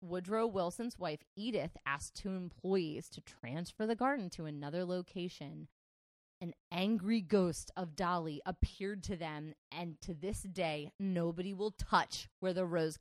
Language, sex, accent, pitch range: English, female, American, 160-195 Hz